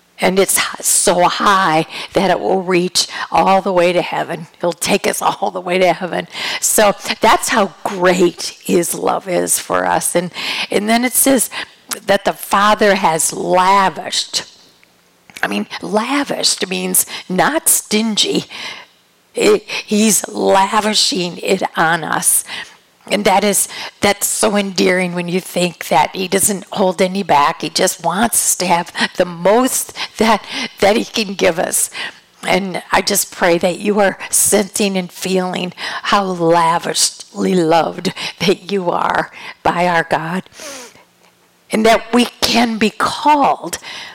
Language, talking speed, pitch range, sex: English, 140 wpm, 180-215 Hz, female